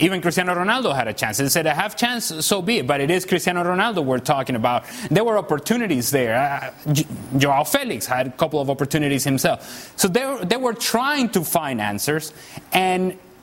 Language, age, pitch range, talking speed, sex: English, 30-49, 155-185 Hz, 210 wpm, male